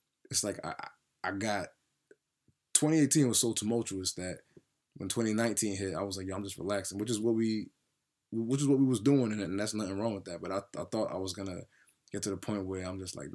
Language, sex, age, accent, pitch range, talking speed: English, male, 20-39, American, 95-105 Hz, 230 wpm